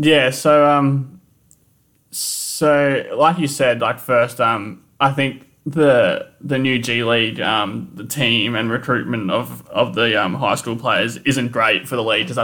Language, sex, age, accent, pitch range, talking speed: English, male, 20-39, Australian, 115-140 Hz, 170 wpm